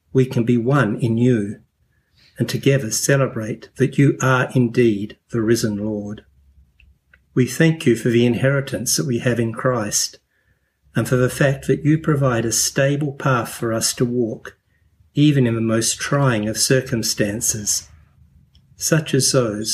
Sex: male